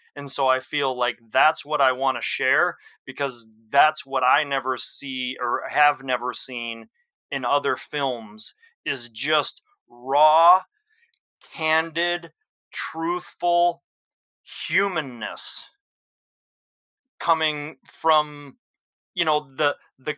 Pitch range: 135-175 Hz